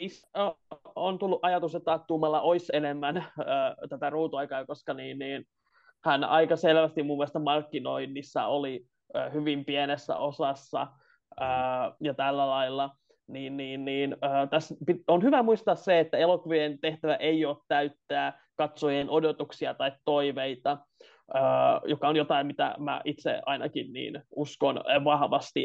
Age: 20-39